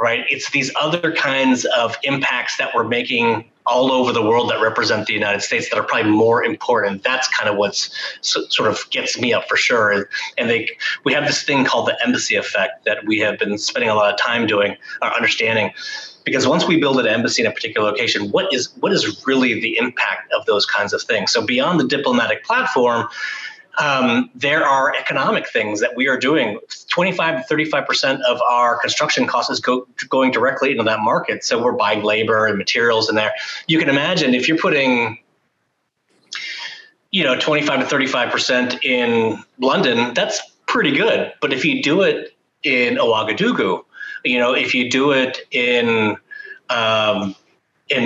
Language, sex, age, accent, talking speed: English, male, 30-49, American, 185 wpm